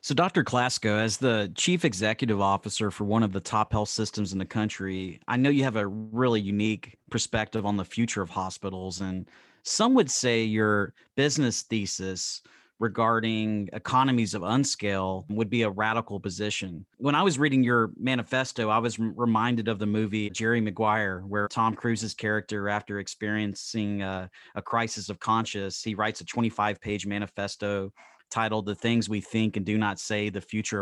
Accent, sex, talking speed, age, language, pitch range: American, male, 170 wpm, 30-49, English, 100-115 Hz